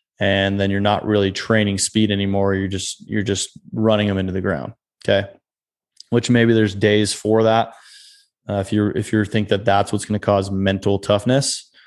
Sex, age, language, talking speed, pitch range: male, 20-39, English, 190 wpm, 100-115 Hz